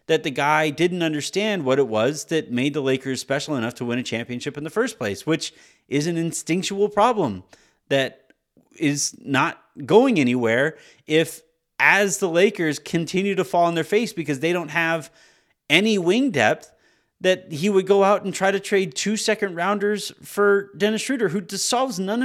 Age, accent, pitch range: 30-49, American, 155-215 Hz